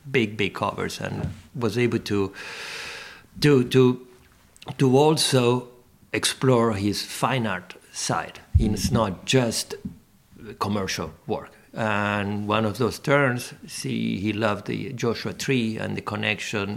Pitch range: 105-130 Hz